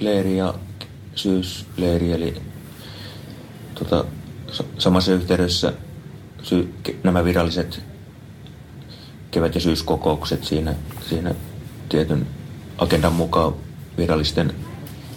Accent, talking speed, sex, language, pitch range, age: native, 75 wpm, male, Finnish, 75-90 Hz, 30-49